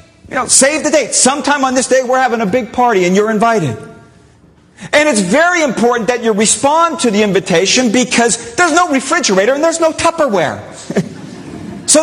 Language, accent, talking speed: English, American, 180 wpm